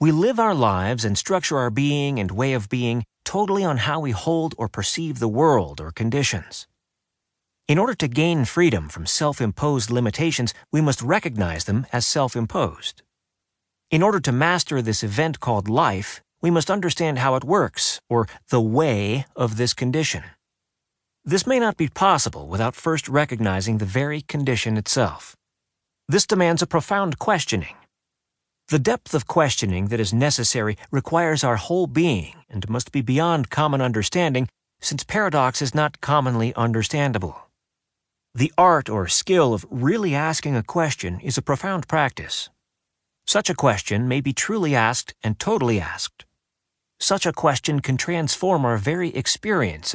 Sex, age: male, 40-59